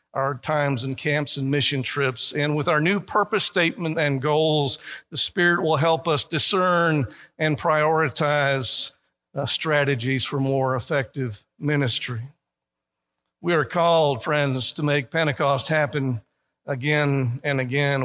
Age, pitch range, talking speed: 50-69, 140-175 Hz, 135 wpm